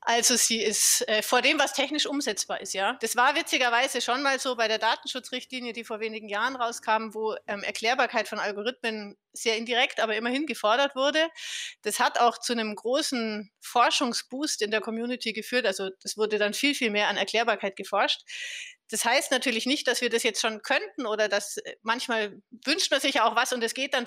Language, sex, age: German, female, 30-49